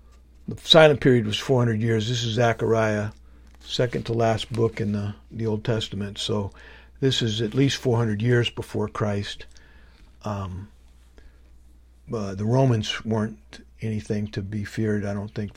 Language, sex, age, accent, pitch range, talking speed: English, male, 60-79, American, 105-130 Hz, 150 wpm